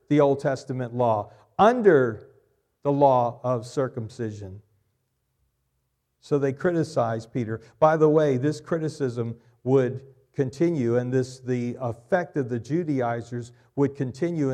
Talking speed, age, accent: 120 wpm, 50-69, American